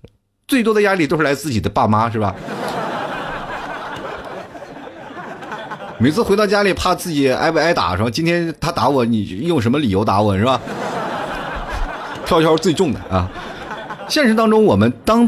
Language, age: Chinese, 30-49